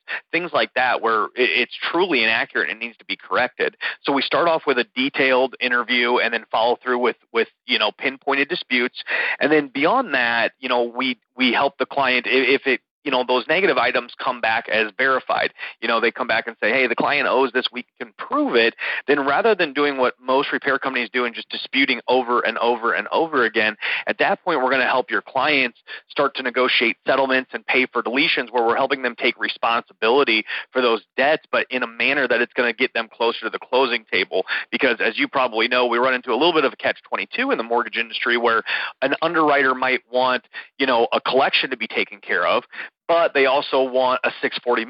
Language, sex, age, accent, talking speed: English, male, 30-49, American, 220 wpm